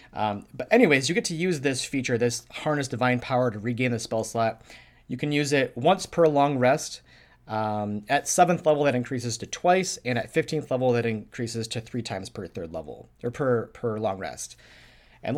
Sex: male